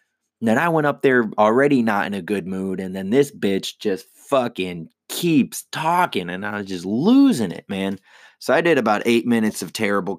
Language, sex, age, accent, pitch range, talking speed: English, male, 20-39, American, 100-130 Hz, 200 wpm